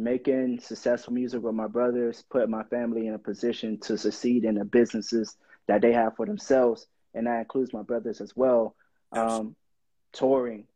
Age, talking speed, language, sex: 20-39, 175 wpm, English, male